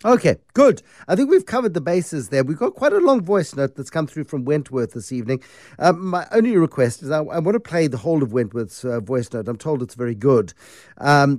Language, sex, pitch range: English, male, 130-175 Hz